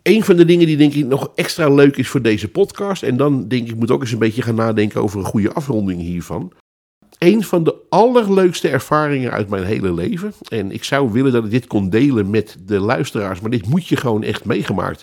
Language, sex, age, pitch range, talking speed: Dutch, male, 50-69, 105-140 Hz, 235 wpm